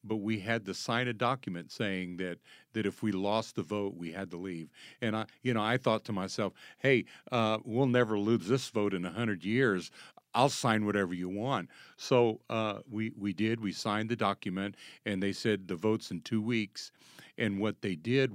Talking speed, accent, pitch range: 210 wpm, American, 95-115 Hz